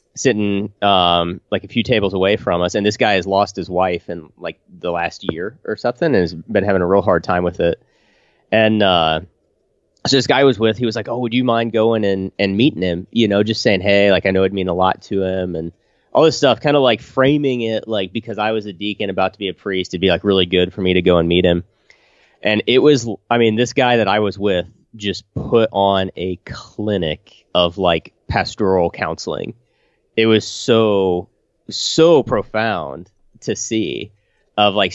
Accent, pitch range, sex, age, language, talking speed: American, 90-110 Hz, male, 30-49, English, 220 wpm